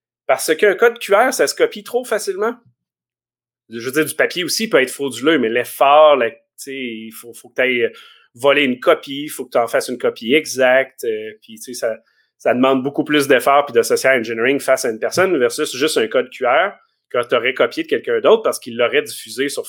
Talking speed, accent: 215 wpm, Canadian